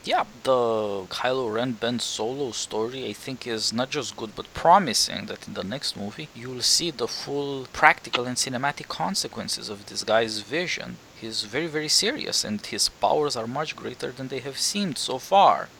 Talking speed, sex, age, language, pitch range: 180 wpm, male, 20-39, English, 115-140 Hz